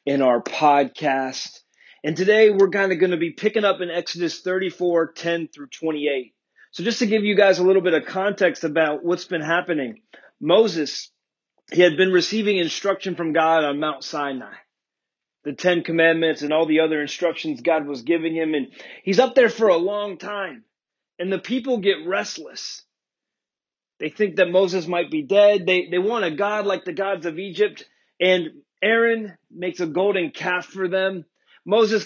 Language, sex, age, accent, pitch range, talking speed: English, male, 30-49, American, 170-205 Hz, 180 wpm